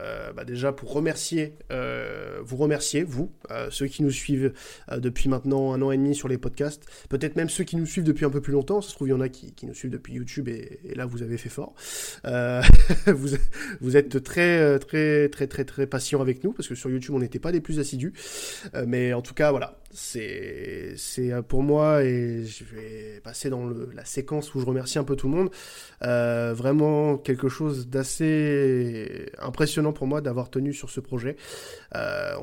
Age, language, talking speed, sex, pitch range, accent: 20-39, French, 215 wpm, male, 130-150 Hz, French